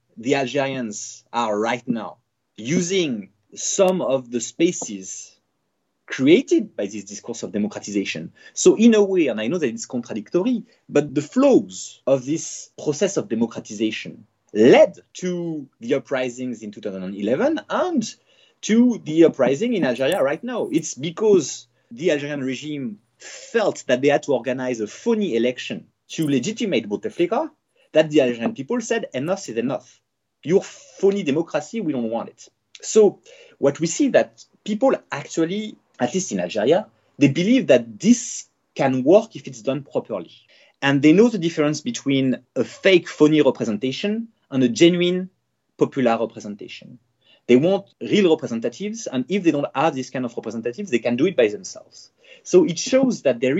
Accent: French